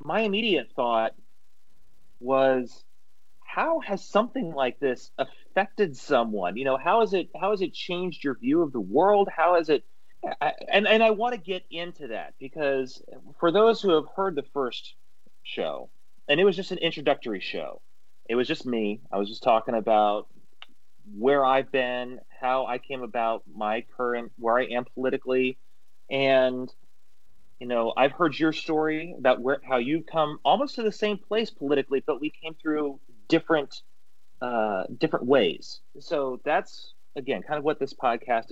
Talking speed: 170 wpm